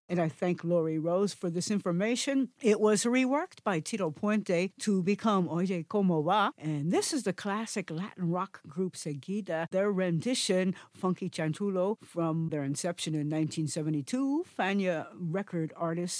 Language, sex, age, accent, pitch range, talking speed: English, female, 60-79, American, 160-215 Hz, 150 wpm